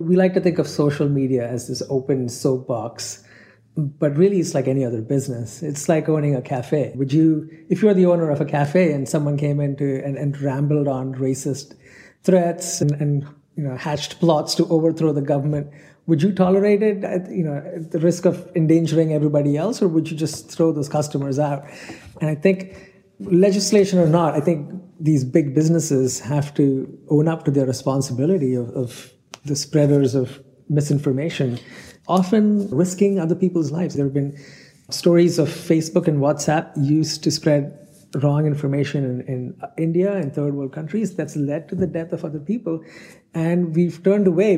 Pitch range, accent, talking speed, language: 140-170 Hz, Indian, 185 wpm, English